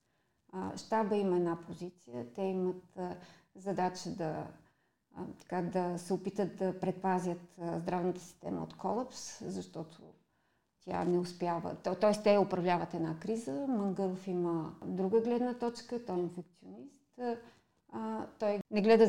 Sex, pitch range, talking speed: female, 185-225 Hz, 135 wpm